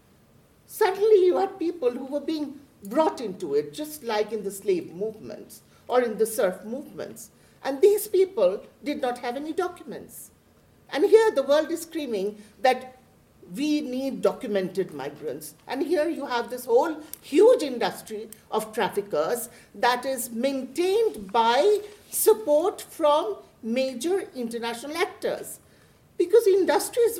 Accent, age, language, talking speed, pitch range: Indian, 50-69, German, 135 wpm, 230-350 Hz